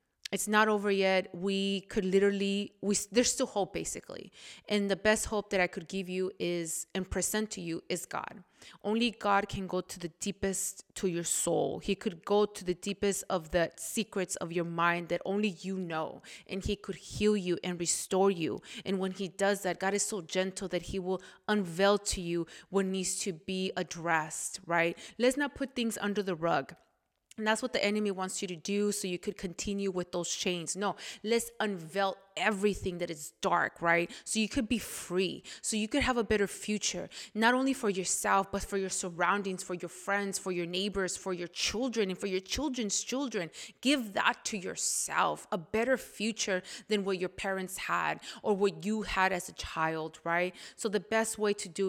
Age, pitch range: 20-39, 185-210 Hz